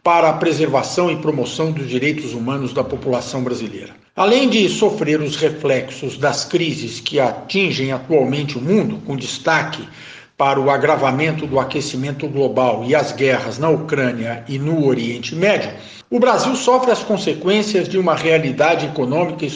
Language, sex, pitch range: Portuguese, male, 135-195 Hz